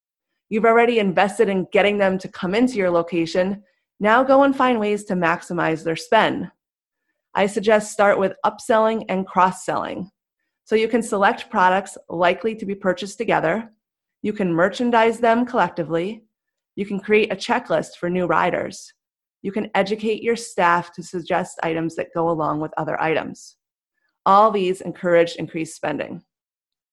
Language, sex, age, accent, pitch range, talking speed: English, female, 30-49, American, 170-215 Hz, 155 wpm